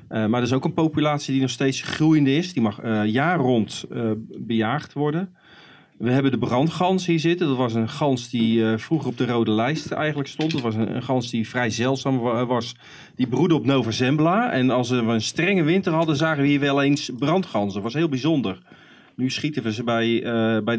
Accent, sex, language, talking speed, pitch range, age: Dutch, male, Dutch, 225 wpm, 115-150 Hz, 40-59